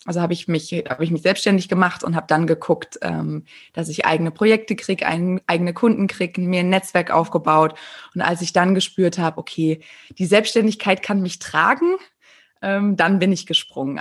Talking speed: 180 wpm